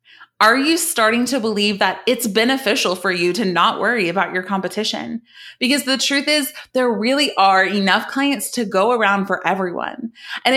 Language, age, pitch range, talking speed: English, 30-49, 180-240 Hz, 175 wpm